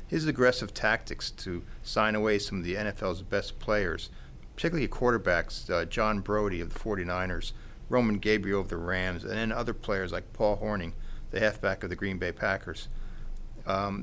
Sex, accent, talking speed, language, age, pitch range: male, American, 170 wpm, English, 50-69, 95-120 Hz